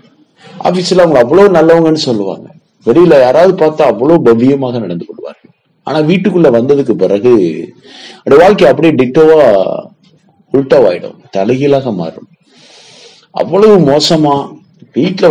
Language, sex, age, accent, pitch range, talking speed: Tamil, male, 30-49, native, 135-190 Hz, 100 wpm